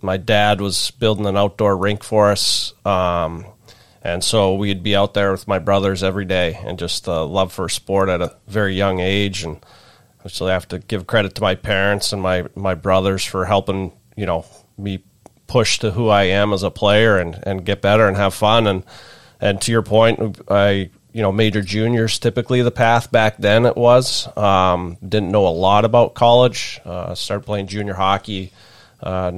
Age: 30-49